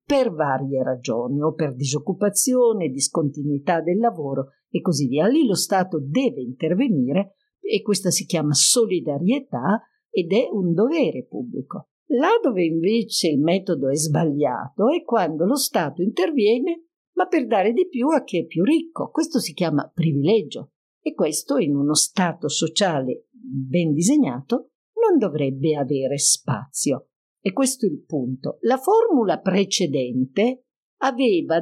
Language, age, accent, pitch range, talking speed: Italian, 50-69, native, 160-245 Hz, 140 wpm